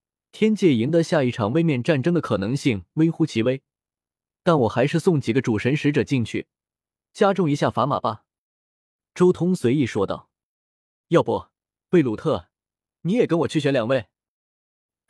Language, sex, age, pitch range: Chinese, male, 20-39, 110-170 Hz